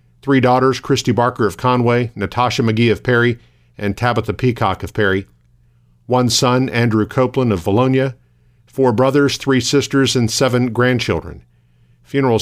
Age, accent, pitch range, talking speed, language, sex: 50-69, American, 100-130 Hz, 140 wpm, English, male